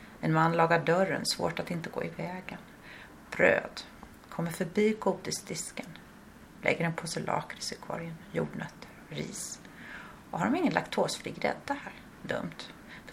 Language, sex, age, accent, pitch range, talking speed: Swedish, female, 30-49, native, 165-205 Hz, 140 wpm